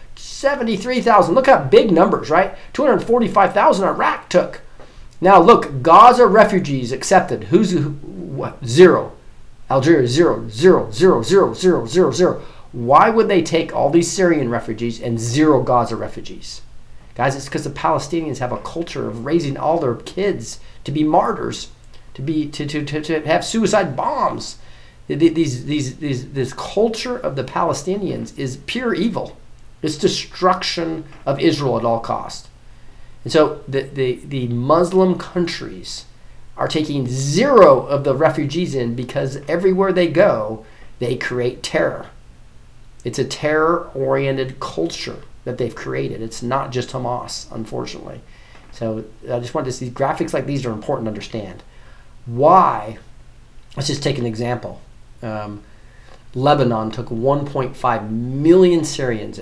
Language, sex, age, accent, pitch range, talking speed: English, male, 40-59, American, 120-170 Hz, 140 wpm